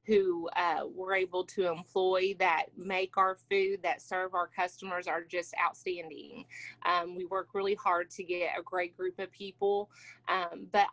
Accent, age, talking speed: American, 30-49, 170 wpm